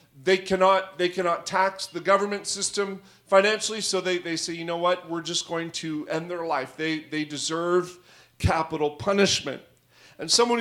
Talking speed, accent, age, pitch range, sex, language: 170 wpm, American, 40-59, 170-205 Hz, male, English